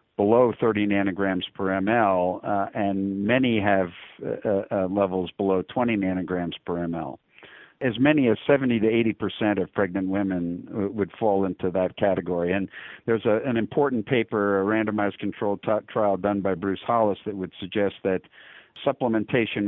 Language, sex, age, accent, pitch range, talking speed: English, male, 50-69, American, 95-115 Hz, 150 wpm